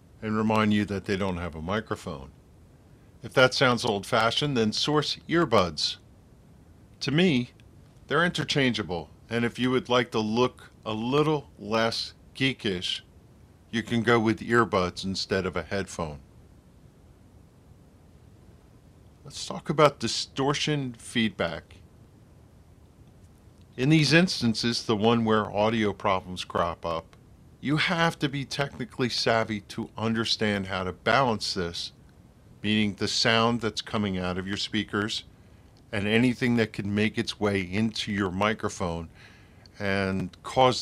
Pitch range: 100-125 Hz